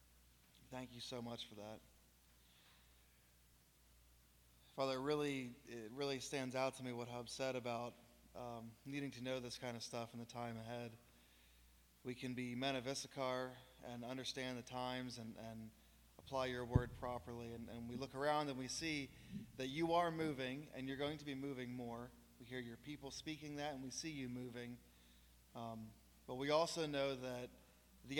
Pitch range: 105-135 Hz